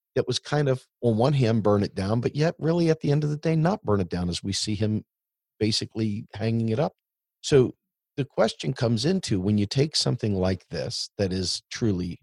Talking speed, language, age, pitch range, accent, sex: 220 wpm, English, 50-69, 100-145 Hz, American, male